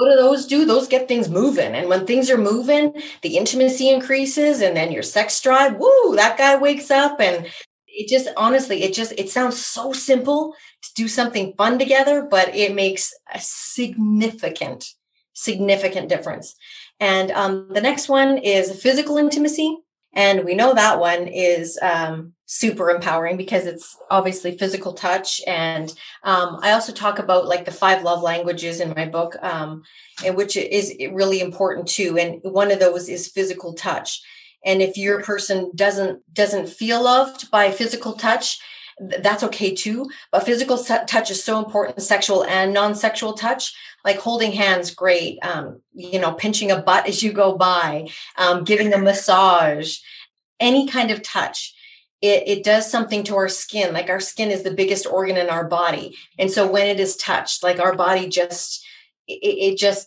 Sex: female